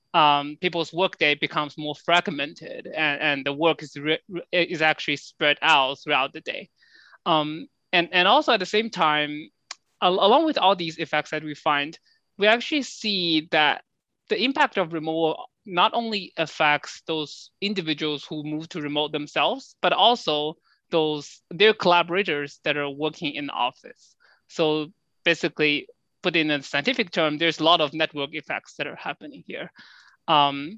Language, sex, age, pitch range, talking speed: English, male, 20-39, 145-170 Hz, 165 wpm